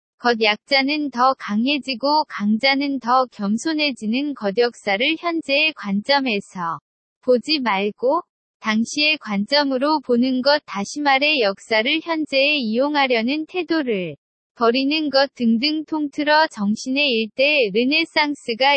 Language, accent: Korean, native